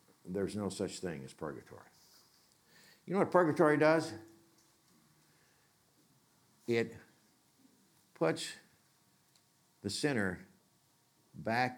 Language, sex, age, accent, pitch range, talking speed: English, male, 60-79, American, 95-155 Hz, 80 wpm